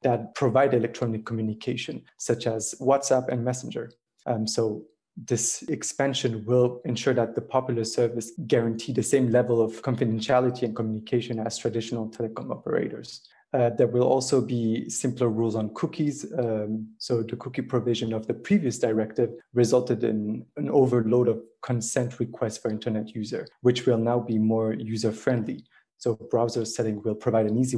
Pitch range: 110-125 Hz